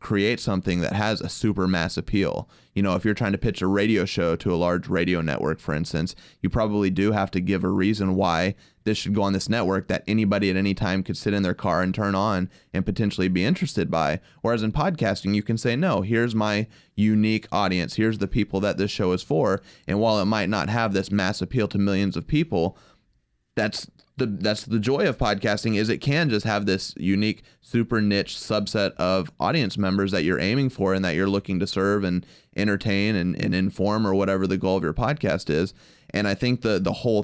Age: 20-39